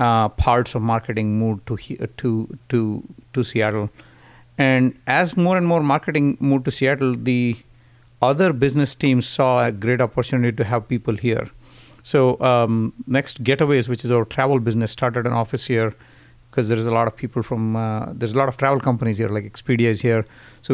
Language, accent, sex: English, Indian, male